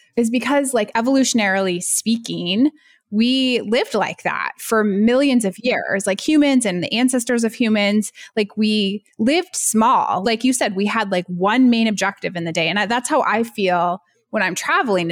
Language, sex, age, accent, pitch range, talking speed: English, female, 20-39, American, 205-275 Hz, 175 wpm